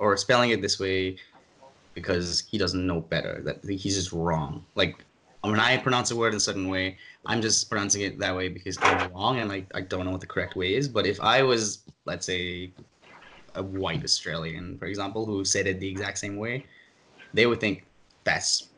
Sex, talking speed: male, 215 wpm